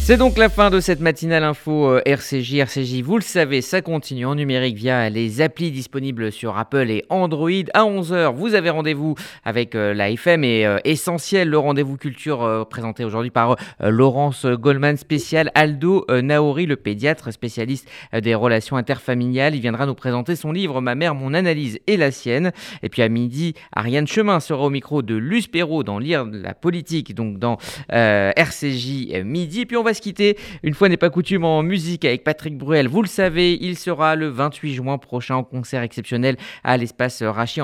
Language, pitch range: Italian, 120-165 Hz